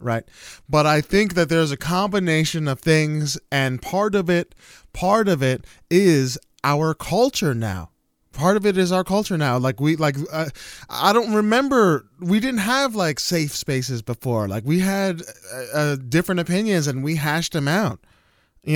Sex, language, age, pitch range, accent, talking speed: male, English, 20-39, 135-180 Hz, American, 175 wpm